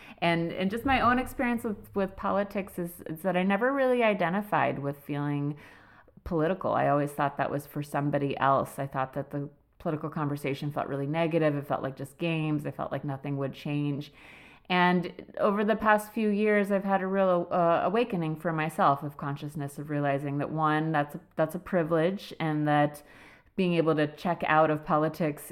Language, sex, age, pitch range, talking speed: English, female, 30-49, 145-185 Hz, 190 wpm